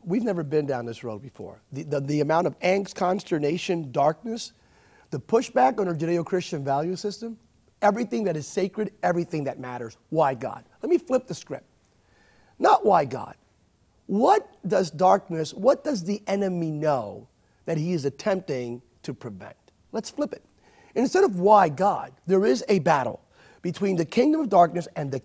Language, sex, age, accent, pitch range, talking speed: English, male, 40-59, American, 155-225 Hz, 170 wpm